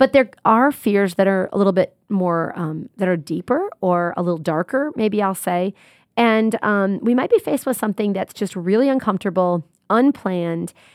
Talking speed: 185 wpm